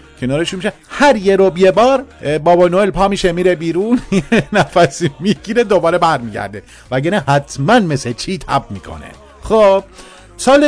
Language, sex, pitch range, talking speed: Persian, male, 130-195 Hz, 145 wpm